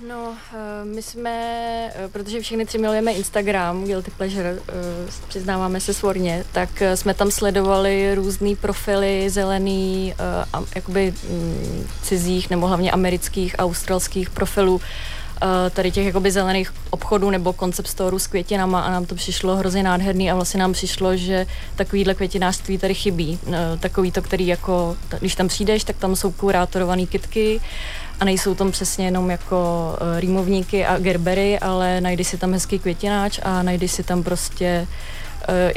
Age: 20-39